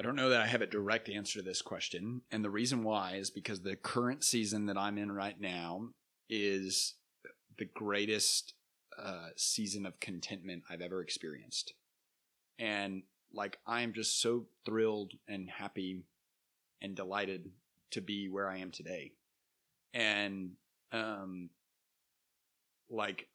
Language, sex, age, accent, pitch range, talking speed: English, male, 30-49, American, 95-115 Hz, 140 wpm